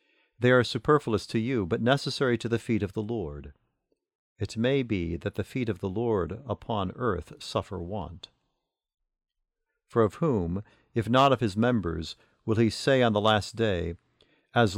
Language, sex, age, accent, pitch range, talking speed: English, male, 50-69, American, 95-120 Hz, 170 wpm